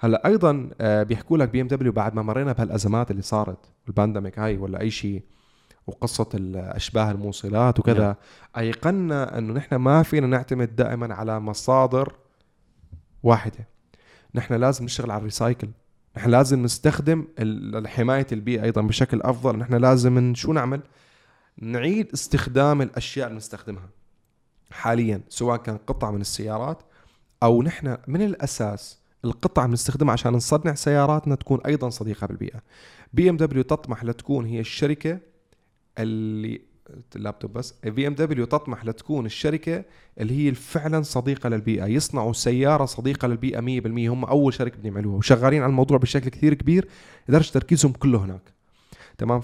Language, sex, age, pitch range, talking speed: Arabic, male, 20-39, 110-140 Hz, 135 wpm